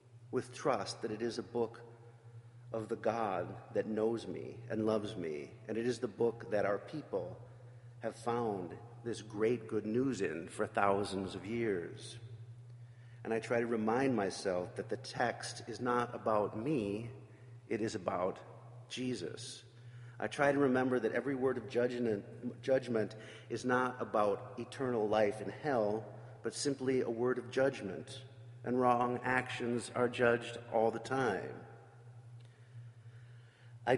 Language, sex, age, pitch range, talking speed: English, male, 40-59, 110-125 Hz, 145 wpm